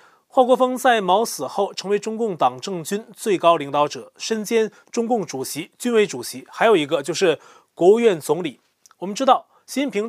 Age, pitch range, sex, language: 30-49, 180-240 Hz, male, Chinese